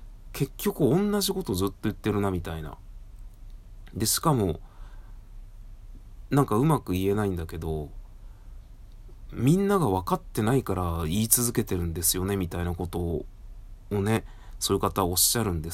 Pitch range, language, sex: 95-110 Hz, Japanese, male